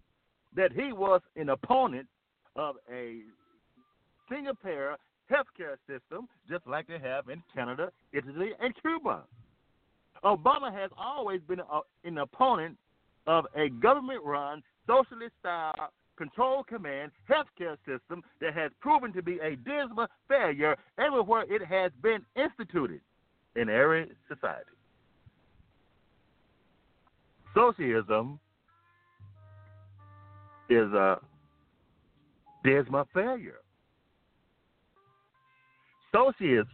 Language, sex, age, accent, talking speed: English, male, 50-69, American, 95 wpm